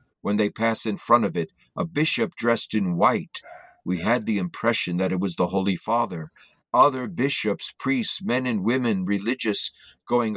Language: English